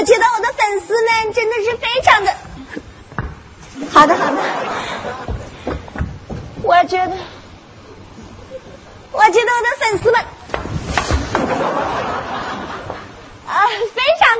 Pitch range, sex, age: 325-445 Hz, female, 30-49